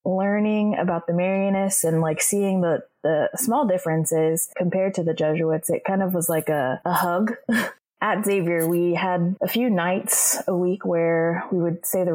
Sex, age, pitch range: female, 20-39, 160-195 Hz